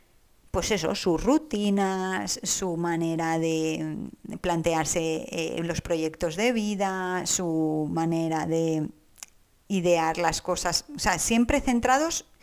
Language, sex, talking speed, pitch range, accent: Spanish, female, 110 wpm, 170-210 Hz, Spanish